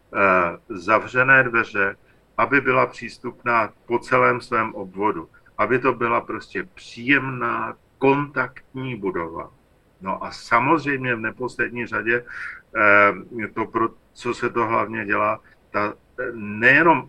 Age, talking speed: 50-69, 105 wpm